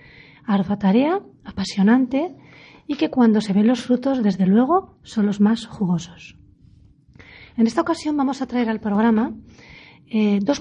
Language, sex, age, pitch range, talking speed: Spanish, female, 30-49, 205-250 Hz, 145 wpm